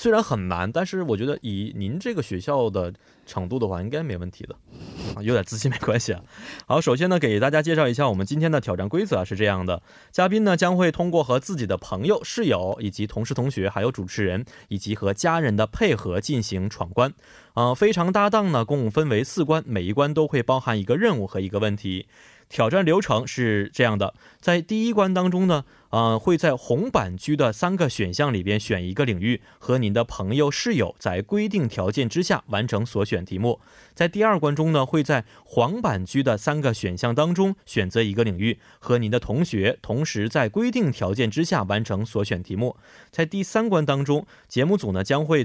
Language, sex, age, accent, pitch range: Korean, male, 20-39, Chinese, 105-155 Hz